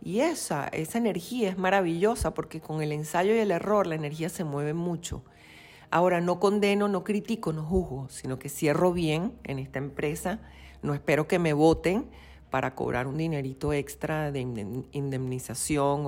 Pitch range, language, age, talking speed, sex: 135-170 Hz, Spanish, 40-59, 165 wpm, female